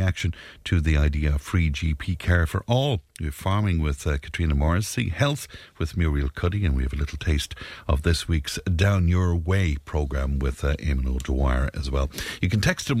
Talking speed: 200 wpm